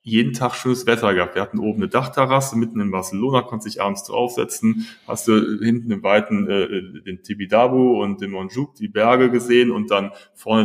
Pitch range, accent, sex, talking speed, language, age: 110-135 Hz, German, male, 195 wpm, German, 30-49